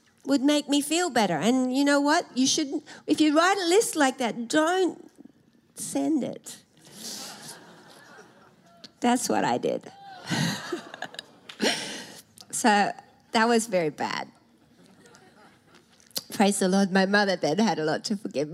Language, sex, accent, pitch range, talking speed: English, female, Australian, 225-315 Hz, 135 wpm